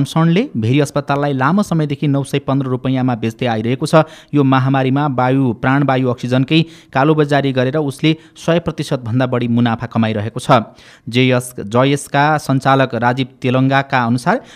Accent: Indian